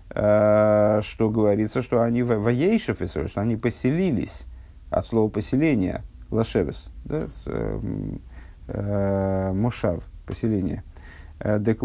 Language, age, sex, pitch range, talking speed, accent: Russian, 50-69, male, 100-125 Hz, 85 wpm, native